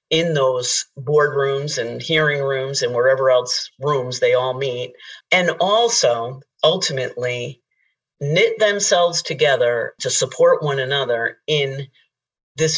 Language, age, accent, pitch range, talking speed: English, 40-59, American, 135-180 Hz, 115 wpm